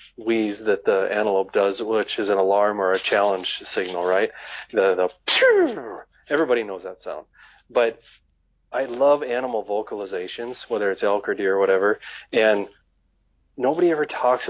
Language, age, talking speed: English, 30-49, 150 wpm